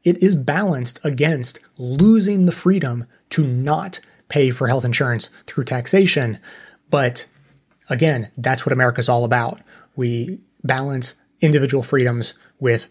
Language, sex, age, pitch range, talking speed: English, male, 30-49, 130-175 Hz, 125 wpm